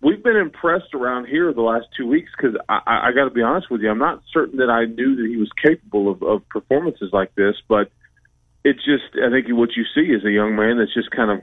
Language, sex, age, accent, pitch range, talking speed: English, male, 40-59, American, 110-130 Hz, 255 wpm